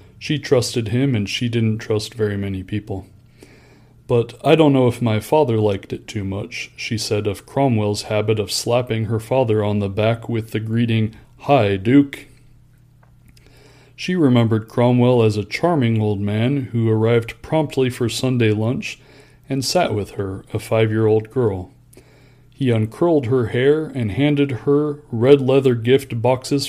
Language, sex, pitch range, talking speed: English, male, 105-130 Hz, 155 wpm